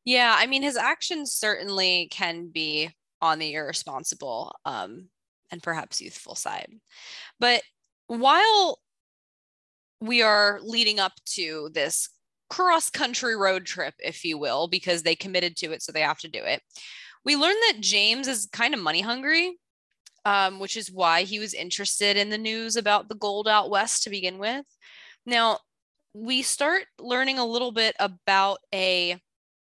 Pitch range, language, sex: 185-260 Hz, English, female